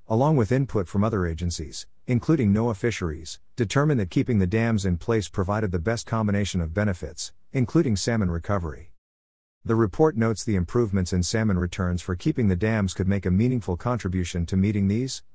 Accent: American